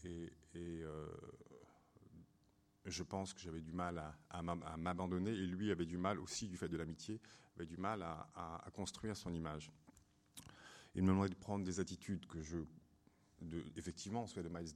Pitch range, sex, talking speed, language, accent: 85-100 Hz, male, 165 wpm, French, French